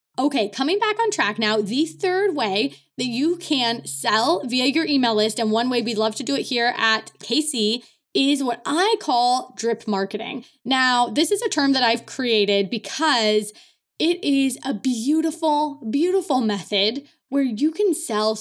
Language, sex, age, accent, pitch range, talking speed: English, female, 20-39, American, 225-315 Hz, 175 wpm